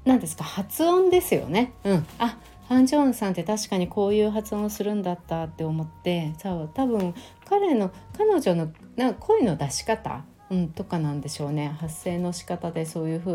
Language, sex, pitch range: Japanese, female, 150-205 Hz